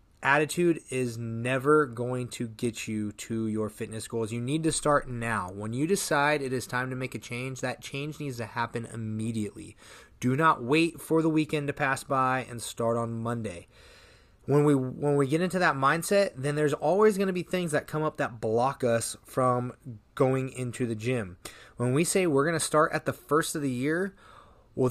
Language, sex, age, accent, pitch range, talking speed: English, male, 20-39, American, 115-150 Hz, 205 wpm